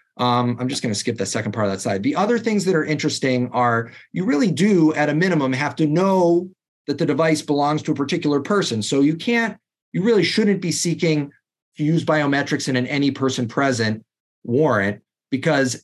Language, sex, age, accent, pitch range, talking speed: English, male, 30-49, American, 120-155 Hz, 205 wpm